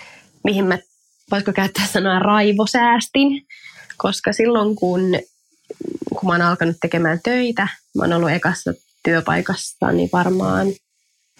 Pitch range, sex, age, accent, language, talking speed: 175-235 Hz, female, 20-39, native, Finnish, 105 wpm